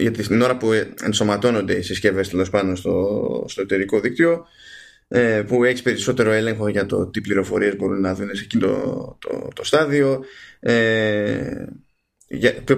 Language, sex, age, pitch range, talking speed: Greek, male, 20-39, 100-120 Hz, 135 wpm